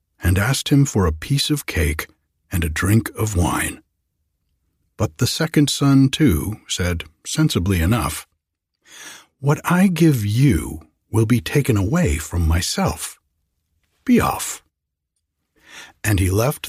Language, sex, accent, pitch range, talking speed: English, male, American, 80-125 Hz, 130 wpm